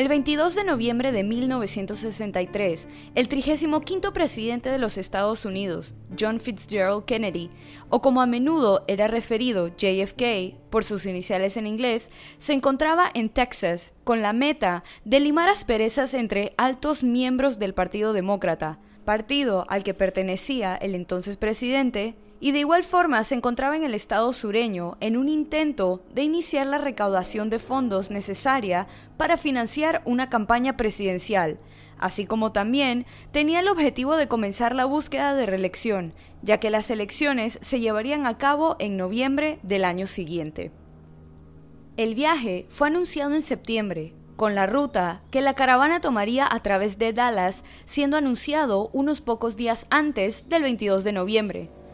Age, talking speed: 20-39, 150 wpm